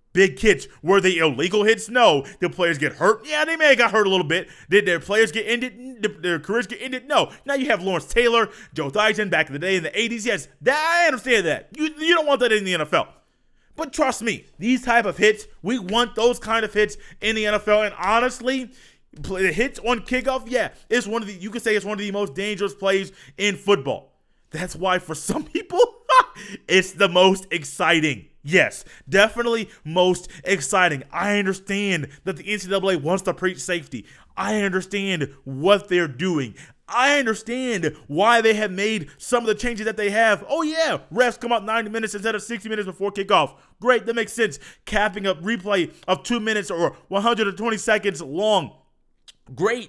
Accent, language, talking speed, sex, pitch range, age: American, English, 195 wpm, male, 185-240 Hz, 30-49